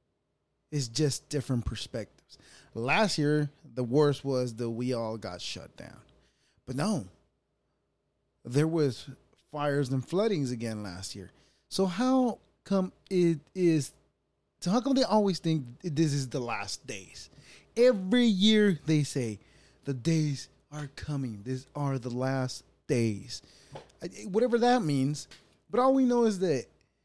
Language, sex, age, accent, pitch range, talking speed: English, male, 20-39, American, 115-170 Hz, 140 wpm